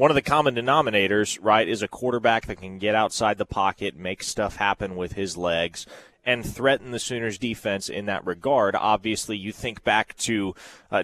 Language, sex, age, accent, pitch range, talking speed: English, male, 30-49, American, 100-125 Hz, 190 wpm